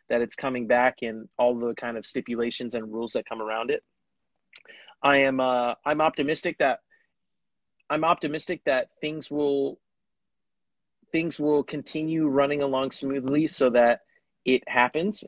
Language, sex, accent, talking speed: English, male, American, 145 wpm